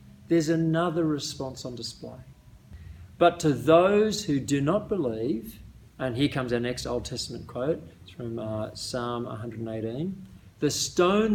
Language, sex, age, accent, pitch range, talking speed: English, male, 40-59, Australian, 120-175 Hz, 135 wpm